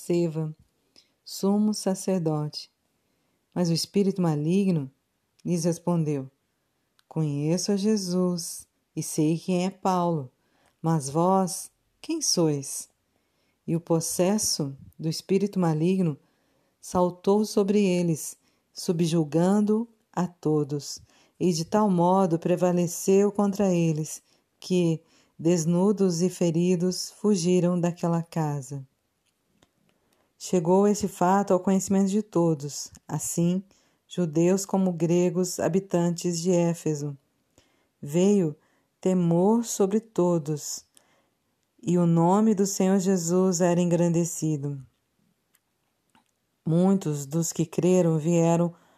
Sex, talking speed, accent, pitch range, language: female, 95 wpm, Brazilian, 165-190 Hz, Portuguese